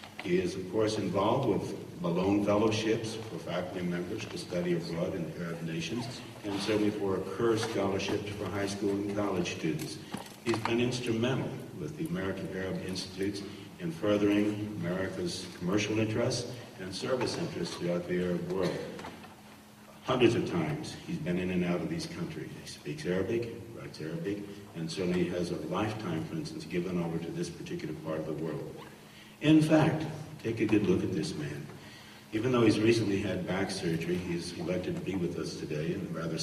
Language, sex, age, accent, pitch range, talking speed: English, male, 60-79, American, 90-115 Hz, 180 wpm